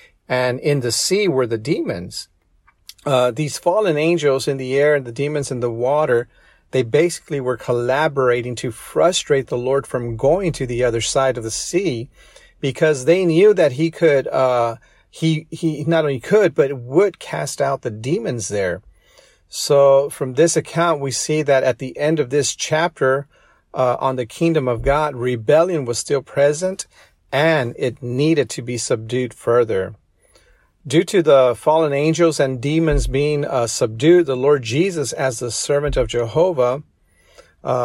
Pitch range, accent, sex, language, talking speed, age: 125-160 Hz, American, male, English, 165 wpm, 40-59